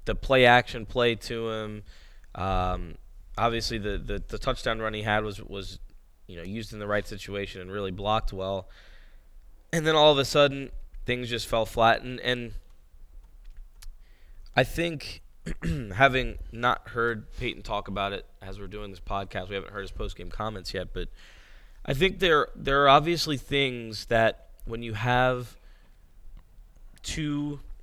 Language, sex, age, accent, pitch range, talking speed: English, male, 20-39, American, 95-120 Hz, 160 wpm